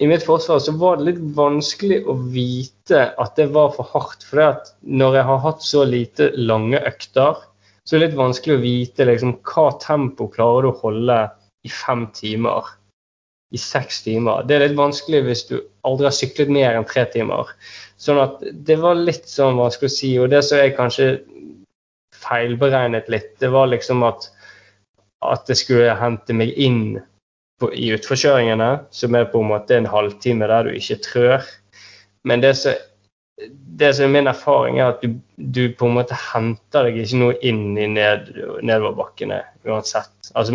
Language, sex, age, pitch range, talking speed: English, male, 20-39, 110-140 Hz, 180 wpm